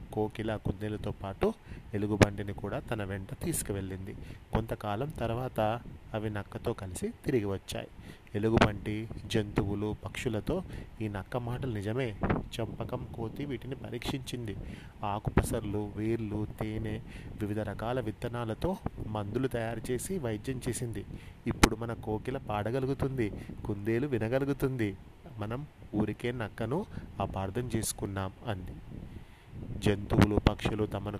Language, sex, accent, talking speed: Telugu, male, native, 100 wpm